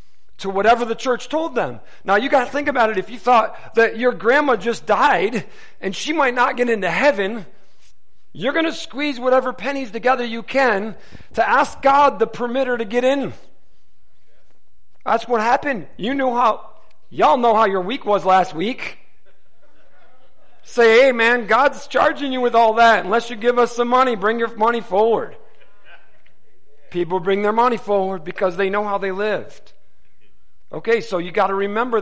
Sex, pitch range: male, 185-245 Hz